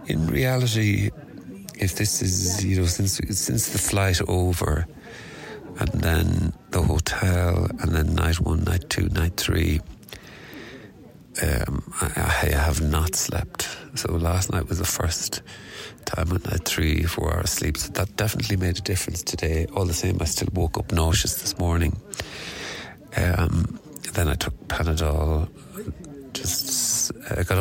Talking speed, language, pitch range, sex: 145 wpm, English, 80-100 Hz, male